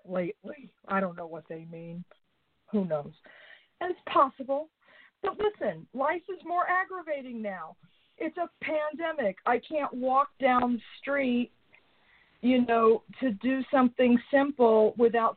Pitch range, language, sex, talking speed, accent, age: 195-265 Hz, English, female, 135 wpm, American, 50-69